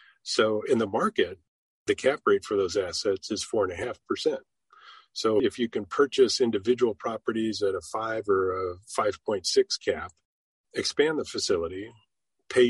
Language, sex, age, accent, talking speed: English, male, 40-59, American, 160 wpm